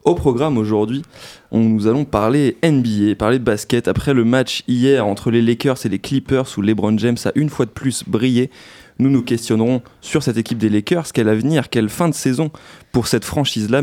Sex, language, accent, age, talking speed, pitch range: male, French, French, 20-39, 205 wpm, 110-140 Hz